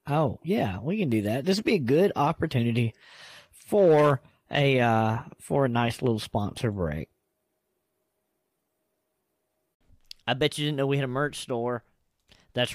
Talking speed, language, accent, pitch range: 150 wpm, English, American, 110-140 Hz